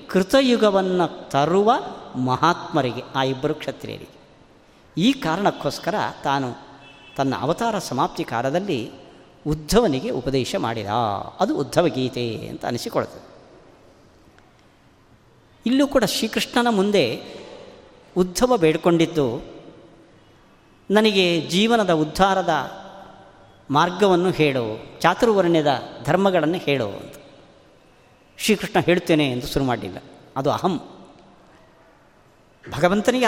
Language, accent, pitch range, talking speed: Kannada, native, 140-210 Hz, 80 wpm